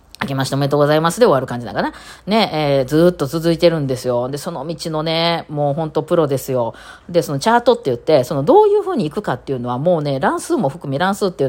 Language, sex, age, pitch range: Japanese, female, 40-59, 140-230 Hz